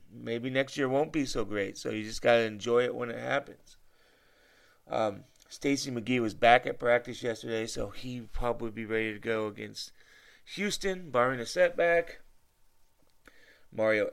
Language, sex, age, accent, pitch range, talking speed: English, male, 30-49, American, 110-145 Hz, 155 wpm